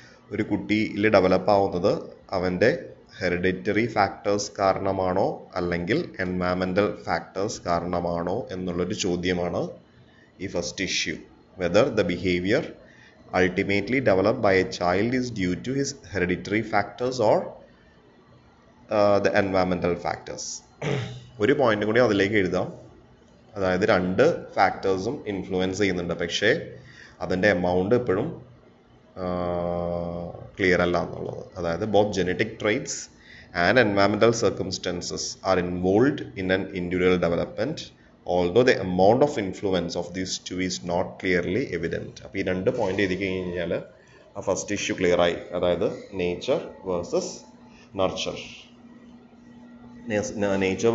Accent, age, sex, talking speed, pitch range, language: Indian, 30-49, male, 65 wpm, 90-100 Hz, English